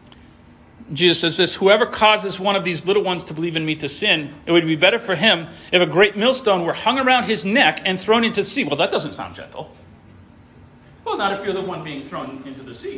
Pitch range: 145-220 Hz